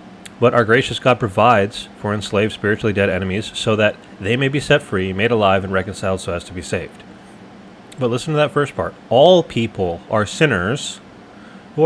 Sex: male